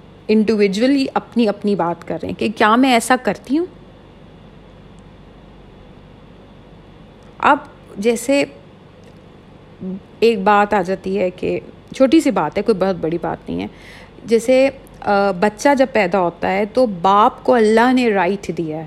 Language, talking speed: Urdu, 140 wpm